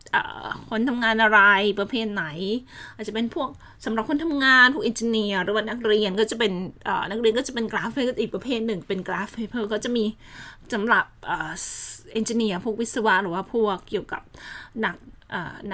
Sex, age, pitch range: female, 20-39, 190-225 Hz